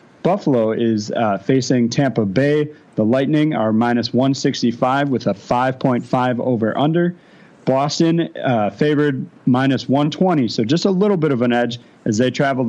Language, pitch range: English, 120-145 Hz